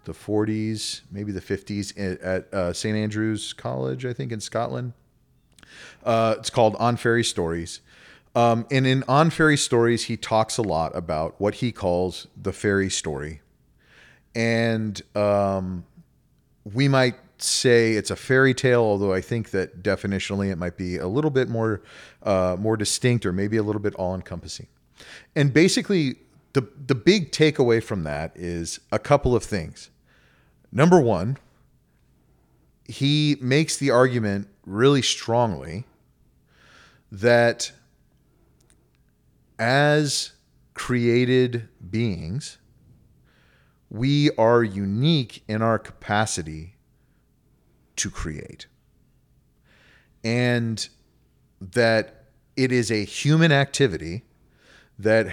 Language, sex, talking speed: English, male, 115 wpm